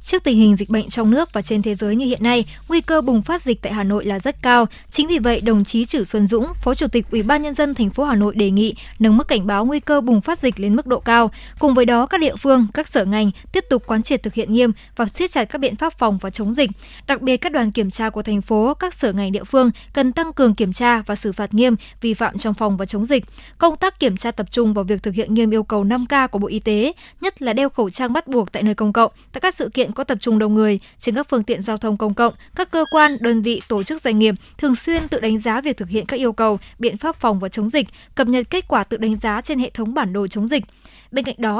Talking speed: 295 wpm